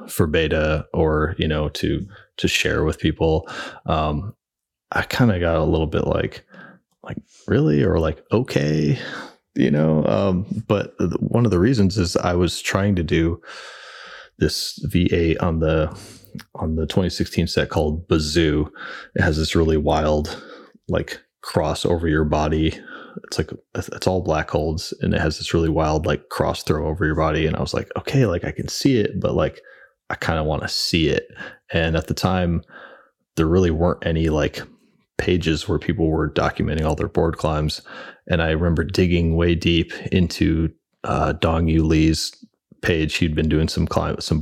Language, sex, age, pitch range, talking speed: English, male, 20-39, 80-90 Hz, 175 wpm